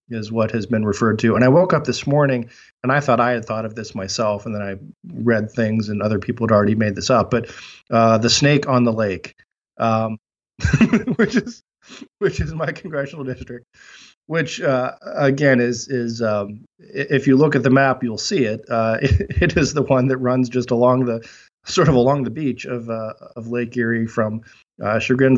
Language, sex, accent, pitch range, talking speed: English, male, American, 110-135 Hz, 210 wpm